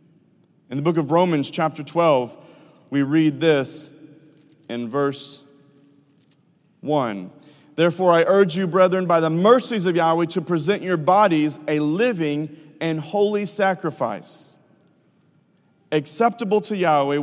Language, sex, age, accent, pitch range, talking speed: English, male, 30-49, American, 140-175 Hz, 120 wpm